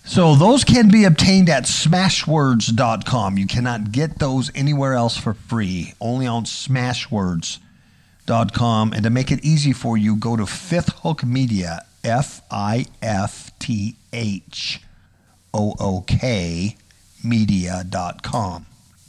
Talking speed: 95 wpm